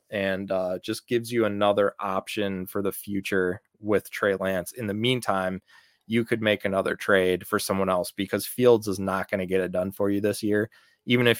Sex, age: male, 20-39